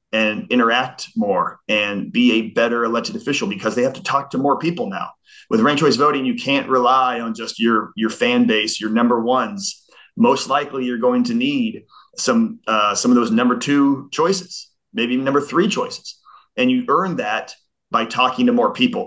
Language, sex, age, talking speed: English, male, 30-49, 190 wpm